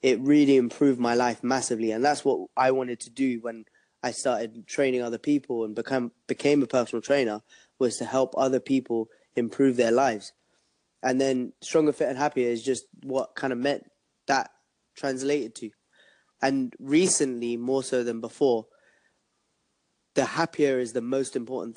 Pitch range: 120-140 Hz